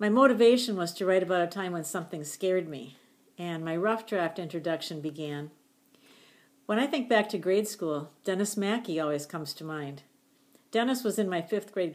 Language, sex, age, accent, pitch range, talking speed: English, female, 50-69, American, 165-215 Hz, 185 wpm